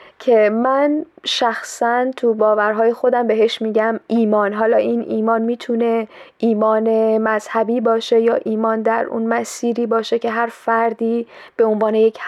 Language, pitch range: Persian, 220-245 Hz